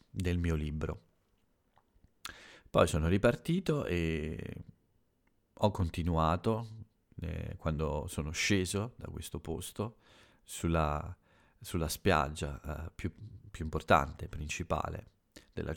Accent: native